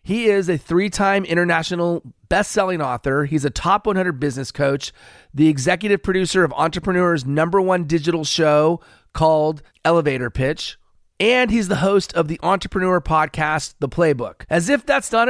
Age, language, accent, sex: 30-49, English, American, male